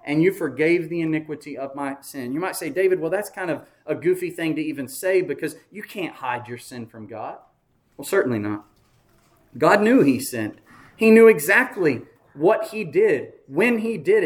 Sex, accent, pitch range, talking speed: male, American, 155-220 Hz, 195 wpm